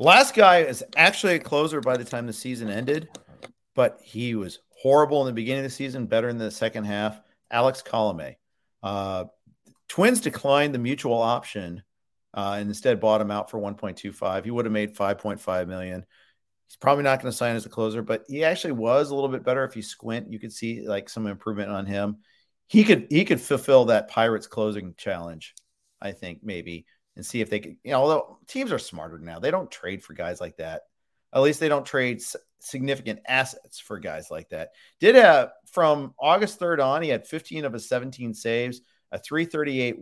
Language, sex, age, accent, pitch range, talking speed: English, male, 50-69, American, 100-135 Hz, 200 wpm